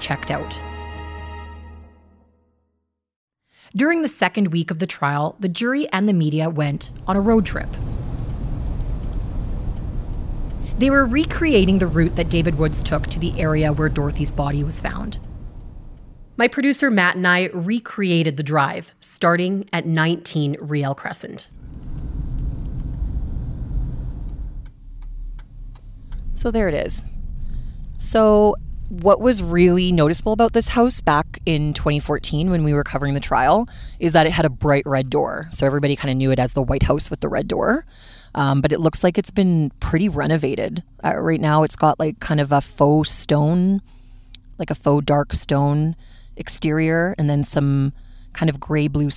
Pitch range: 130-180 Hz